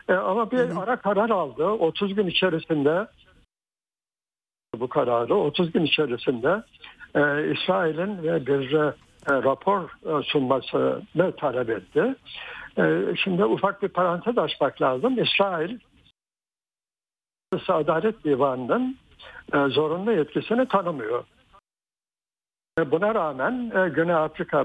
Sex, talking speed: male, 95 wpm